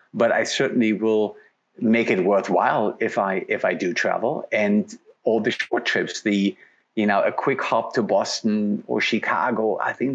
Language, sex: English, male